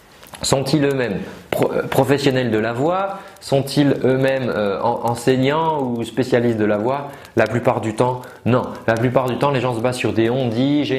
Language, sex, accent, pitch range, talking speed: French, male, French, 115-140 Hz, 175 wpm